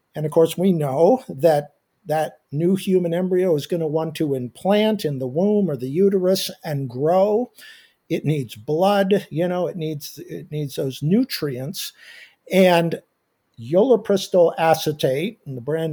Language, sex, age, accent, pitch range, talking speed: English, male, 60-79, American, 150-195 Hz, 155 wpm